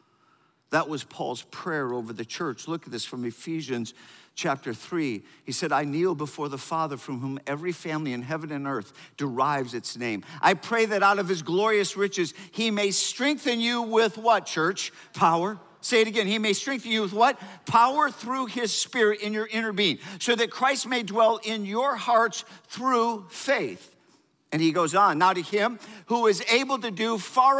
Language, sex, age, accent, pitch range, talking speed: English, male, 50-69, American, 175-230 Hz, 190 wpm